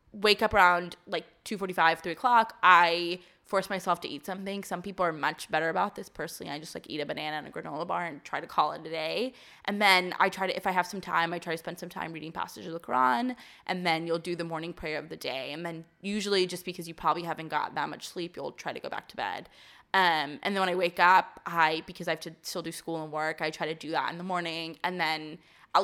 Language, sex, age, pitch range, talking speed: English, female, 20-39, 165-205 Hz, 270 wpm